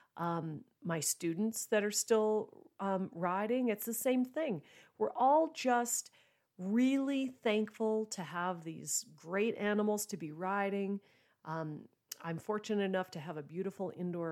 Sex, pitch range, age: female, 160-210 Hz, 40-59